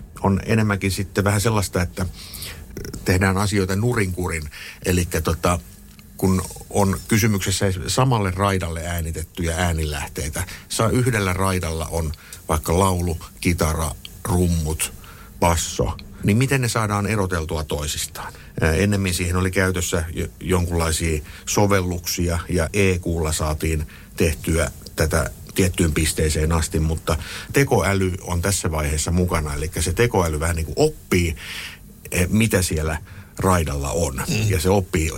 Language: Finnish